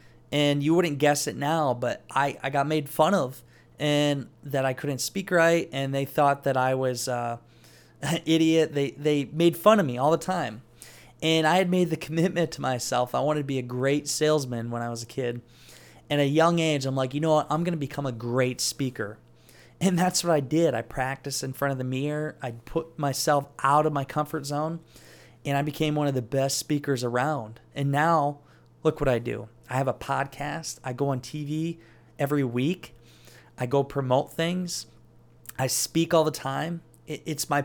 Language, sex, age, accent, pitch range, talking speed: English, male, 20-39, American, 130-160 Hz, 205 wpm